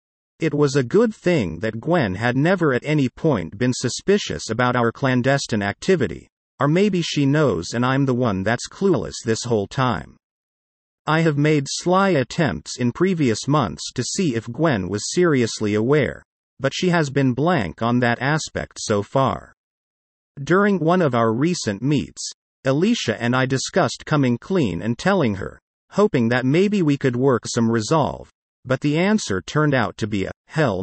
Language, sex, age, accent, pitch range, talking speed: English, male, 50-69, American, 115-155 Hz, 170 wpm